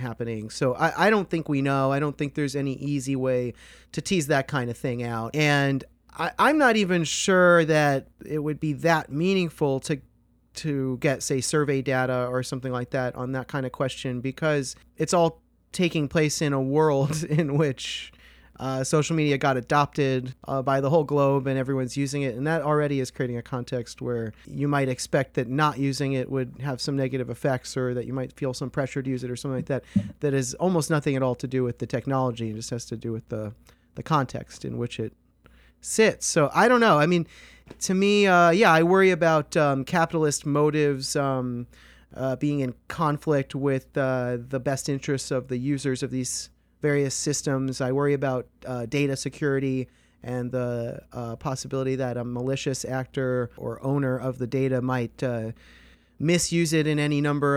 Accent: American